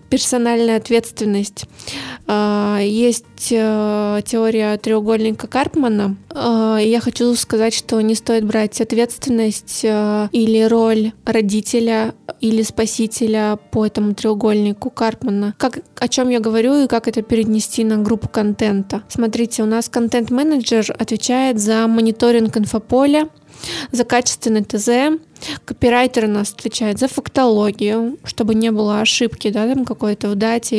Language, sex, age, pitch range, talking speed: Russian, female, 20-39, 215-240 Hz, 120 wpm